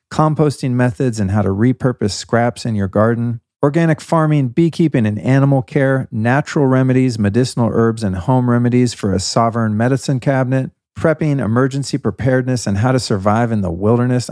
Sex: male